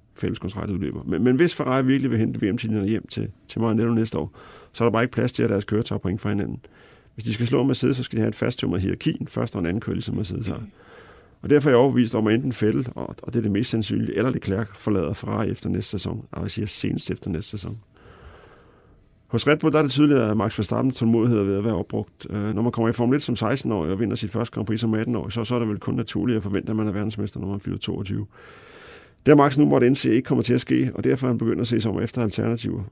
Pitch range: 105-120 Hz